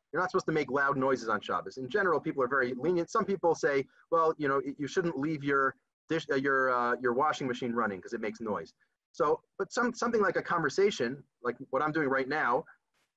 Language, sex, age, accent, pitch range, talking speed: English, male, 30-49, American, 140-190 Hz, 230 wpm